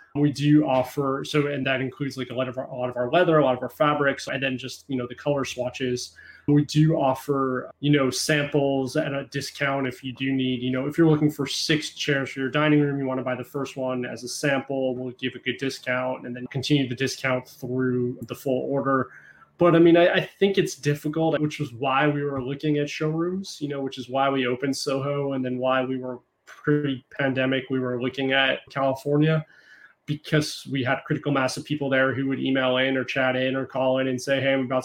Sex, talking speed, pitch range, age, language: male, 235 wpm, 130-145 Hz, 20-39, English